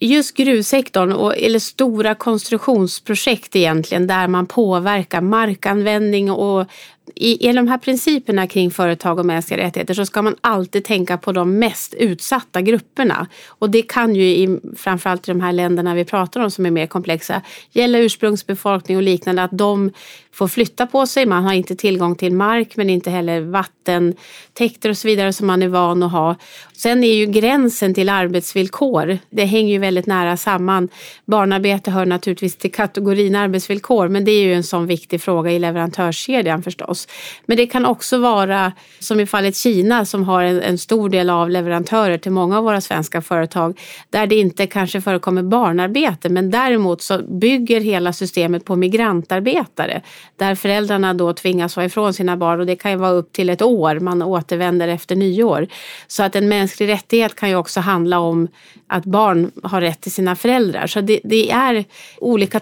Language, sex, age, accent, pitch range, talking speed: Swedish, female, 30-49, native, 180-215 Hz, 180 wpm